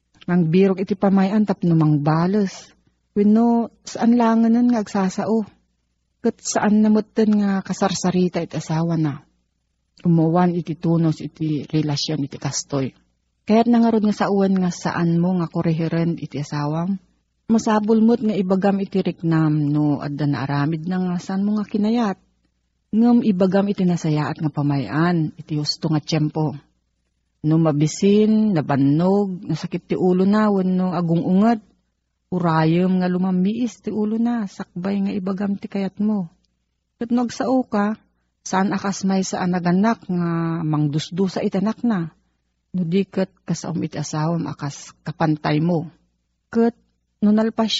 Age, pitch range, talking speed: 40-59, 155-210 Hz, 135 wpm